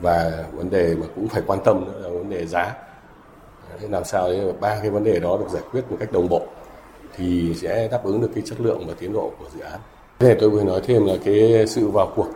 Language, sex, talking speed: Vietnamese, male, 250 wpm